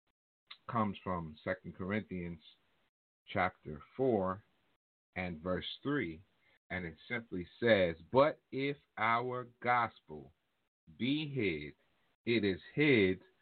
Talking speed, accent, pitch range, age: 100 wpm, American, 90-130 Hz, 50-69